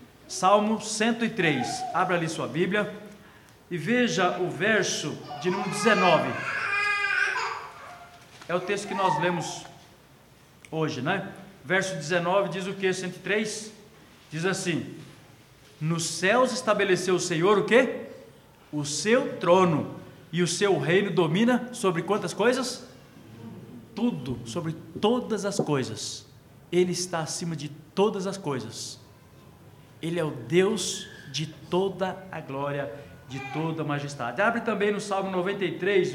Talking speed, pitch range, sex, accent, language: 125 wpm, 160-215 Hz, male, Brazilian, Portuguese